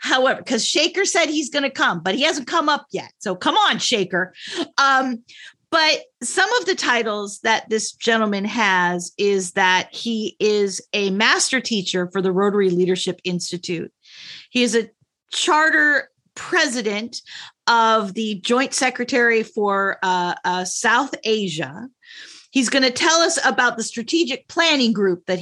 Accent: American